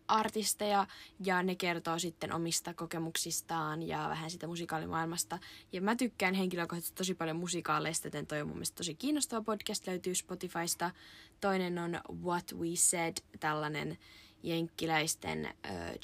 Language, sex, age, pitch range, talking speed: Finnish, female, 20-39, 165-205 Hz, 130 wpm